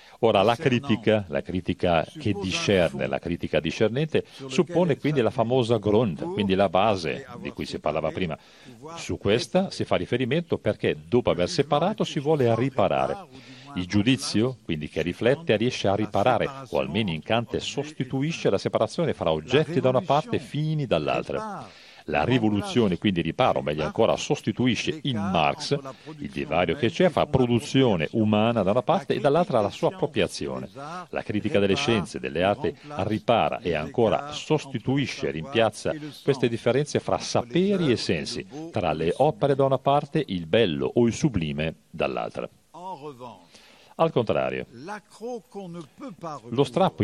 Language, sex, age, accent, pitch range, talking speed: Italian, male, 50-69, native, 100-150 Hz, 150 wpm